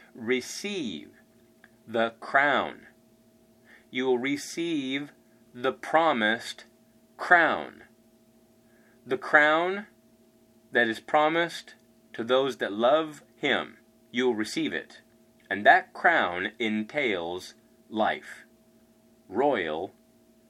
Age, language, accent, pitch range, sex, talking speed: 30-49, English, American, 110-150 Hz, male, 85 wpm